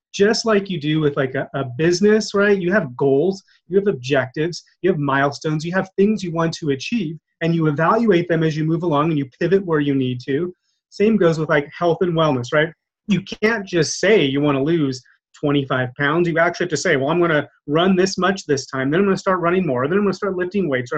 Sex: male